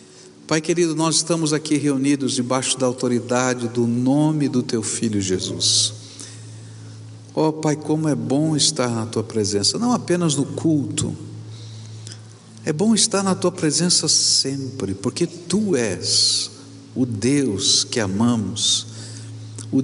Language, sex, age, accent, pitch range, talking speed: Portuguese, male, 60-79, Brazilian, 110-155 Hz, 130 wpm